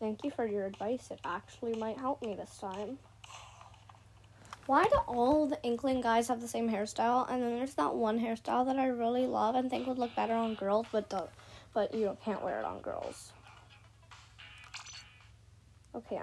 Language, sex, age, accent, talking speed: Russian, female, 20-39, American, 190 wpm